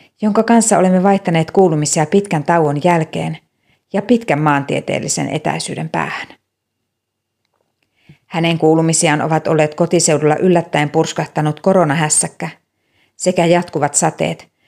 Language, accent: Finnish, native